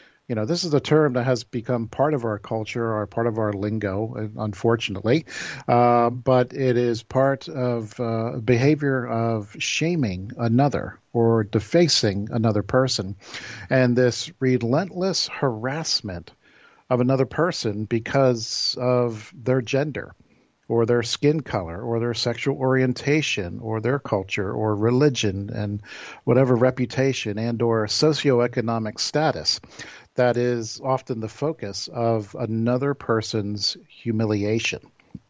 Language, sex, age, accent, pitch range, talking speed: English, male, 50-69, American, 110-130 Hz, 125 wpm